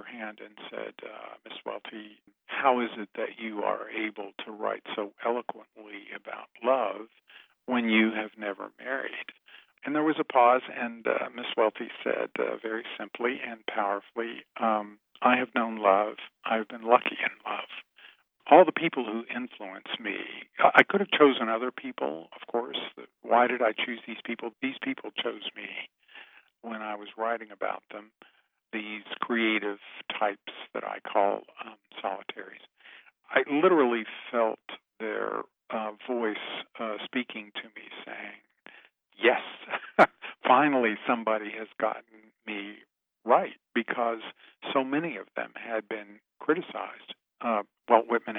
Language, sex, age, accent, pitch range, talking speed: English, male, 50-69, American, 110-125 Hz, 140 wpm